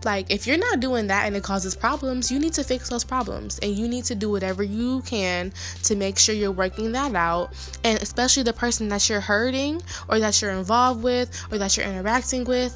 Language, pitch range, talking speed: English, 185-230 Hz, 225 wpm